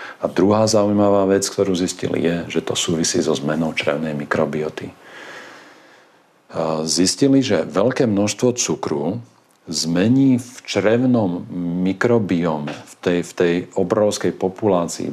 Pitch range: 85-110 Hz